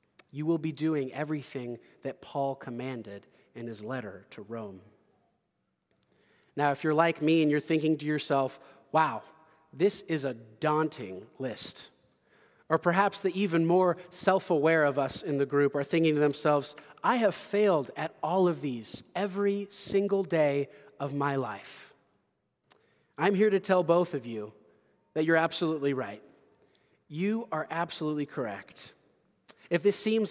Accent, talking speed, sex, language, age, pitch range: American, 150 wpm, male, English, 30-49, 140-185 Hz